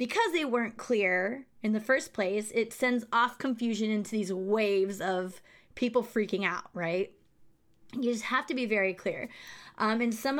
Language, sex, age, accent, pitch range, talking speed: English, female, 20-39, American, 190-240 Hz, 175 wpm